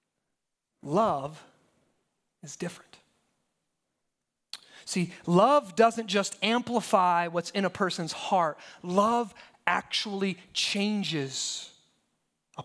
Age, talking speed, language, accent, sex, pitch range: 30-49, 80 wpm, English, American, male, 195-275 Hz